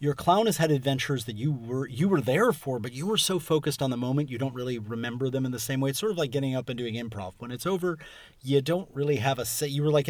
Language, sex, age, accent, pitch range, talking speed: English, male, 30-49, American, 120-150 Hz, 295 wpm